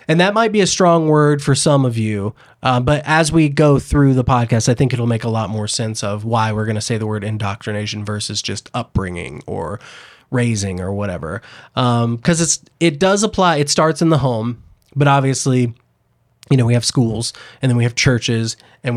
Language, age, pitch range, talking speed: English, 20-39, 115-145 Hz, 210 wpm